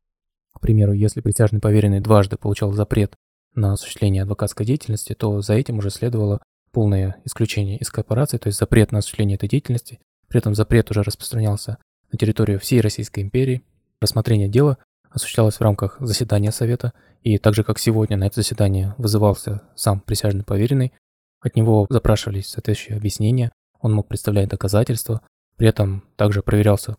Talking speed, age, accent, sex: 150 wpm, 20-39, native, male